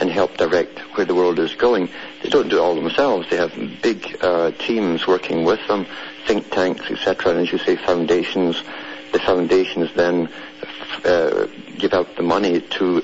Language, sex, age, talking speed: English, male, 60-79, 180 wpm